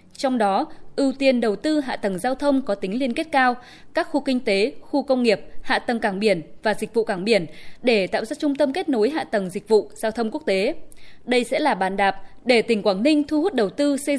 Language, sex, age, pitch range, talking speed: Vietnamese, female, 20-39, 210-275 Hz, 255 wpm